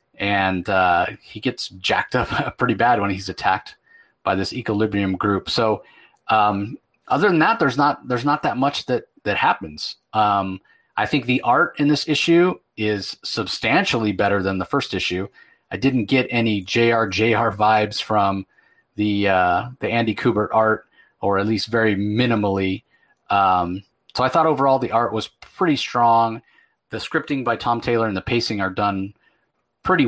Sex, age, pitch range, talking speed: male, 30-49, 100-125 Hz, 165 wpm